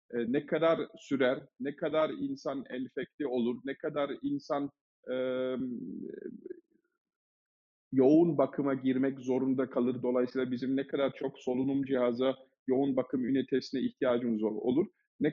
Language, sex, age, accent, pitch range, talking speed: Turkish, male, 50-69, native, 130-165 Hz, 115 wpm